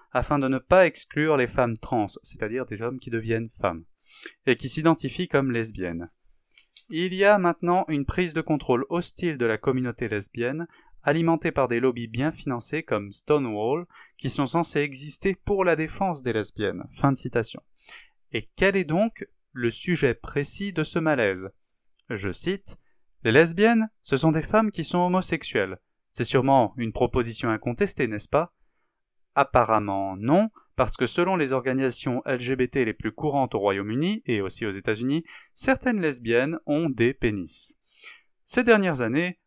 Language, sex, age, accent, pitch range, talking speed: French, male, 20-39, French, 120-165 Hz, 165 wpm